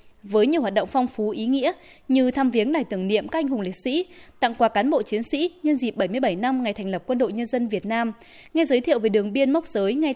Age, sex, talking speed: 20-39, female, 280 wpm